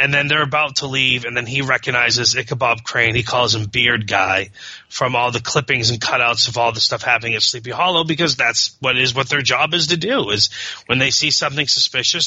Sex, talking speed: male, 230 wpm